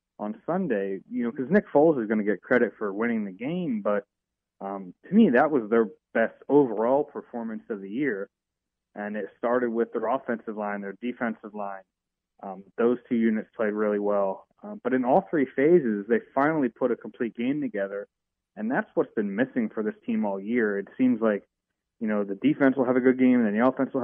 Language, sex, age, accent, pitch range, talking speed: English, male, 30-49, American, 110-130 Hz, 210 wpm